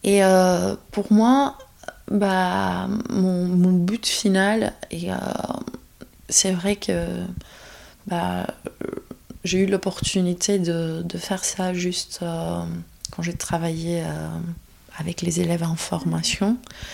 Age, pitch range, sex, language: 20-39, 170-205 Hz, female, French